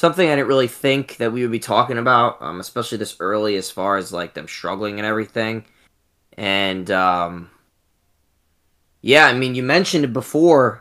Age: 20-39